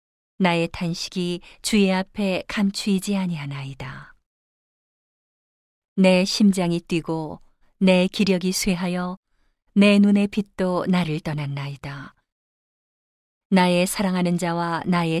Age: 40-59